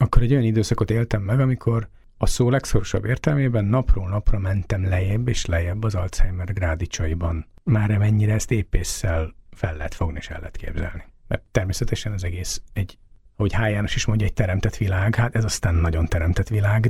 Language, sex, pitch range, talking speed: Hungarian, male, 90-115 Hz, 175 wpm